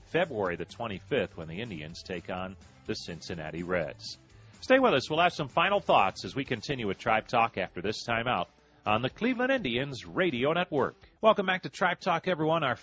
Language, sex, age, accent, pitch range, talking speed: English, male, 40-59, American, 100-130 Hz, 190 wpm